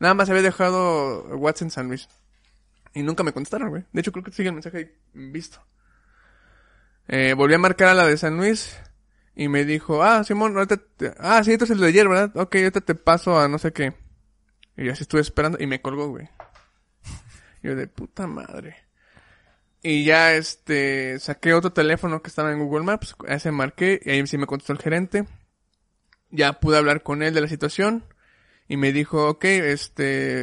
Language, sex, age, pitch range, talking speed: Spanish, male, 20-39, 140-180 Hz, 195 wpm